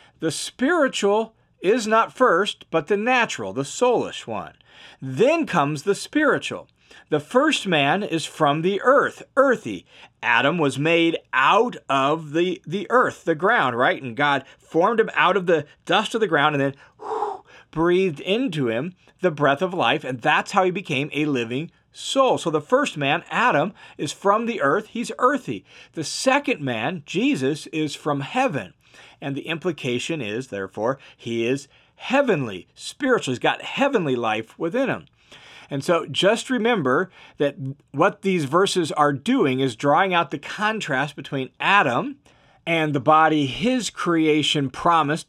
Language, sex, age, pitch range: English, male, 40-59, 140-210 Hz